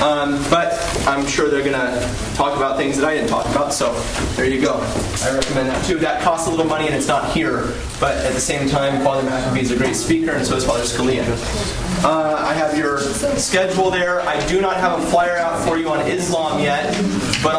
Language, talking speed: English, 230 wpm